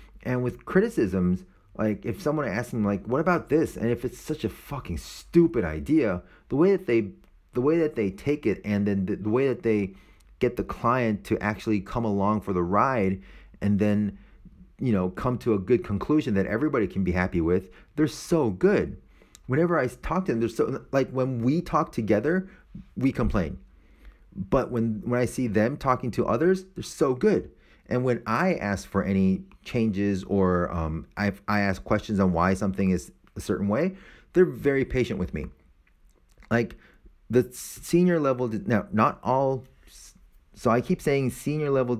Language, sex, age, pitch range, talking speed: English, male, 30-49, 90-125 Hz, 185 wpm